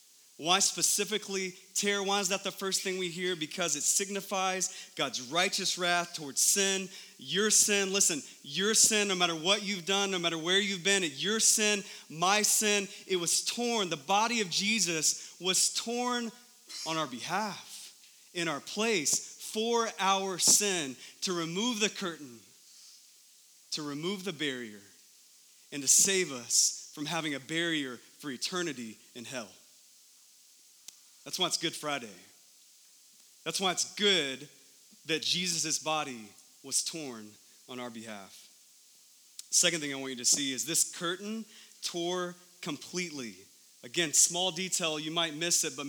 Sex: male